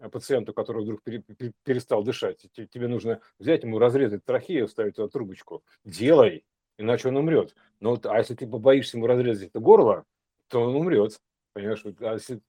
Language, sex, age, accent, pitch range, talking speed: Russian, male, 50-69, native, 115-185 Hz, 165 wpm